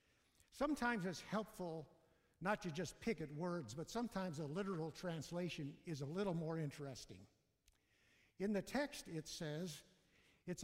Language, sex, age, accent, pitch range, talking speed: English, male, 60-79, American, 150-200 Hz, 140 wpm